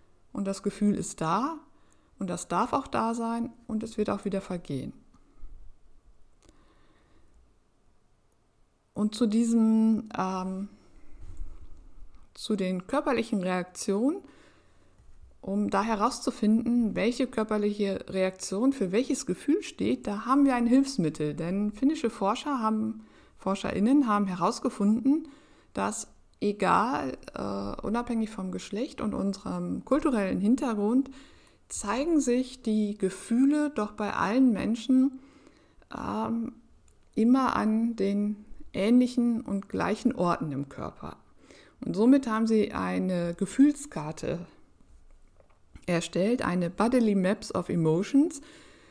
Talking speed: 105 wpm